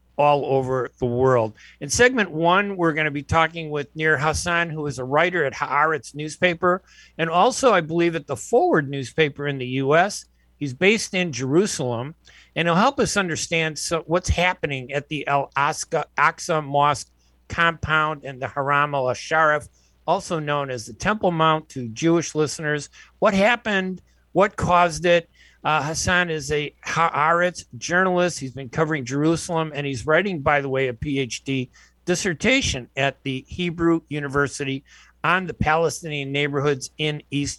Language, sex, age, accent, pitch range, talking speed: English, male, 50-69, American, 140-170 Hz, 155 wpm